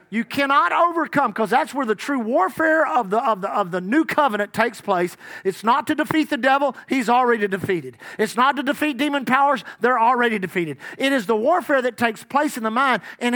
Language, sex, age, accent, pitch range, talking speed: English, male, 40-59, American, 215-285 Hz, 215 wpm